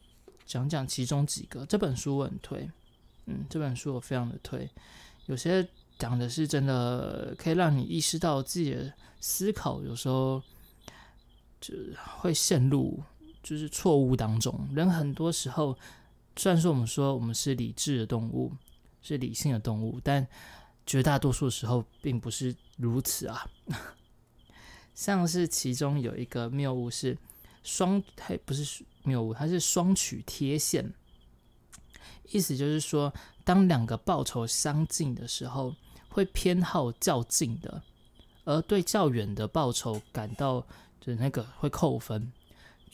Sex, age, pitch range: male, 20-39, 115-155 Hz